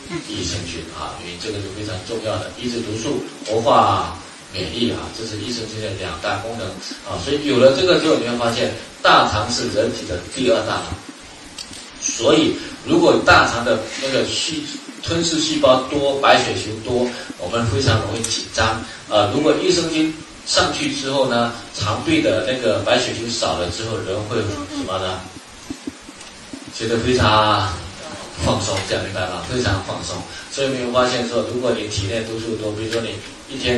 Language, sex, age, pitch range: Chinese, male, 30-49, 95-125 Hz